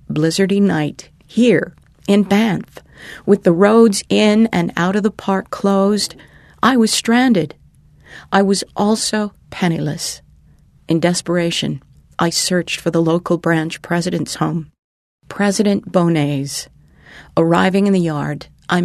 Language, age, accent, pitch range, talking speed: English, 40-59, American, 170-220 Hz, 125 wpm